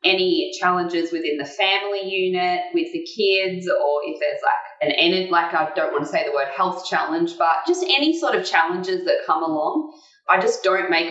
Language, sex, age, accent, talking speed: English, female, 20-39, Australian, 205 wpm